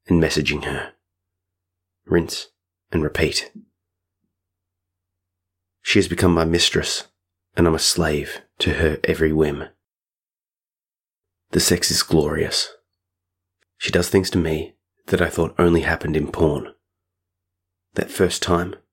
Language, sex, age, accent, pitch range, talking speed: English, male, 30-49, Australian, 80-90 Hz, 120 wpm